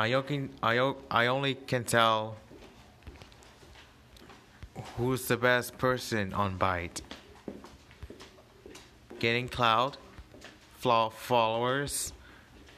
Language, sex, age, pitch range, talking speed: English, male, 30-49, 95-130 Hz, 65 wpm